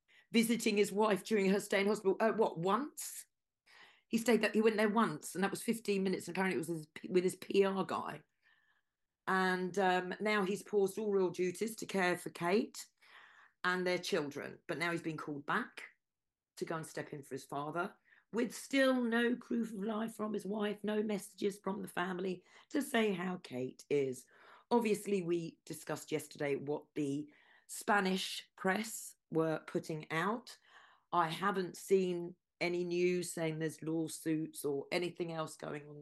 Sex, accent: female, British